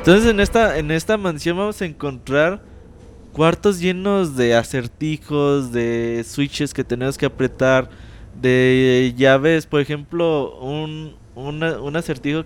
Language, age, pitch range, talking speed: Spanish, 20-39, 120-170 Hz, 130 wpm